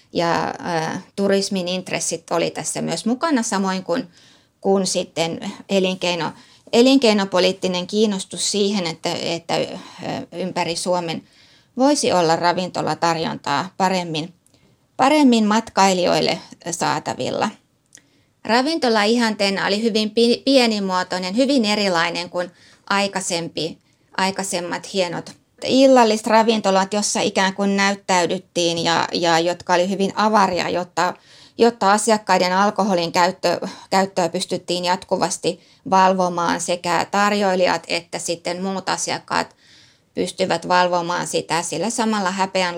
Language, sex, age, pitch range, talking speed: Finnish, female, 20-39, 175-210 Hz, 100 wpm